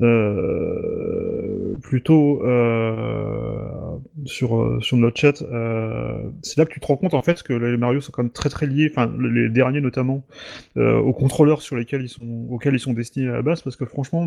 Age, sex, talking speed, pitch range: 30-49, male, 200 wpm, 115-140 Hz